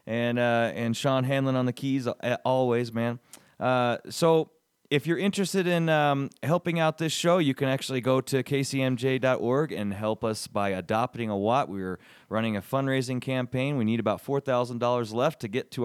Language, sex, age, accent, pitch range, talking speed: English, male, 30-49, American, 105-135 Hz, 180 wpm